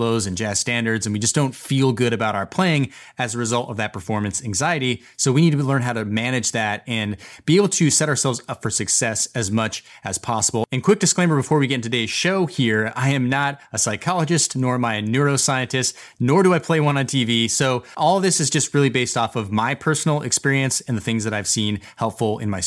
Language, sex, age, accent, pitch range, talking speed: English, male, 30-49, American, 115-145 Hz, 235 wpm